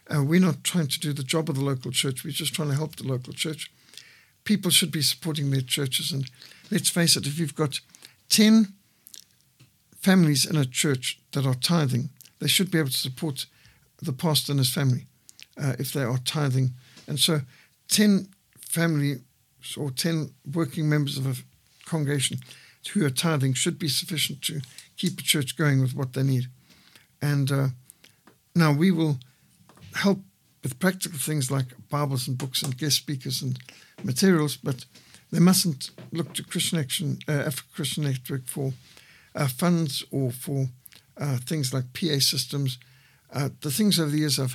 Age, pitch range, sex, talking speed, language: 60-79, 135-160 Hz, male, 170 wpm, English